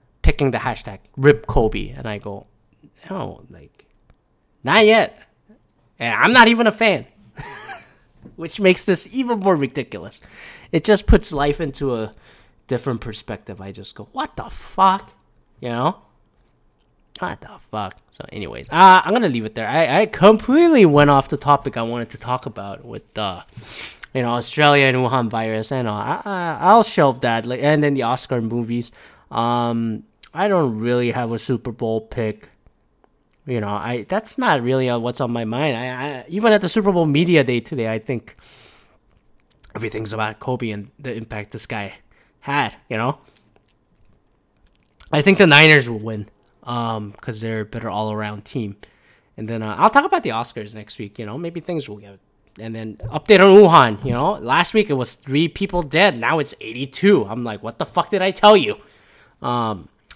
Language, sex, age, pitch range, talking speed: English, male, 20-39, 110-170 Hz, 185 wpm